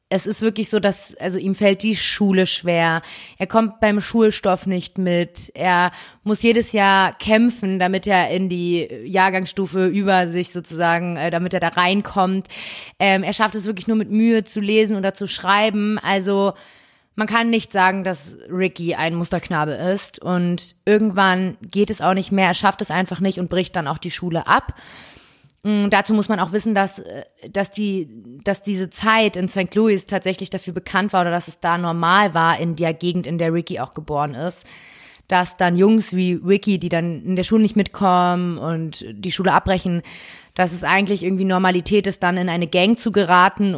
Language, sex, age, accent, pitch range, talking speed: German, female, 30-49, German, 180-210 Hz, 190 wpm